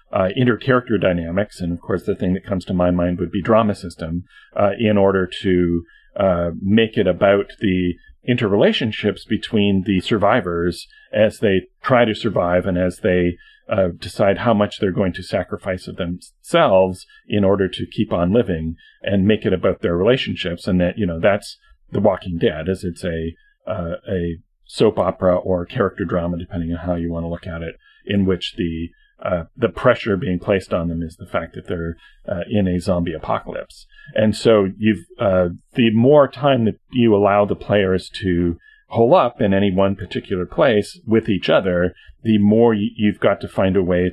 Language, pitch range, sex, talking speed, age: English, 90-110 Hz, male, 190 wpm, 40-59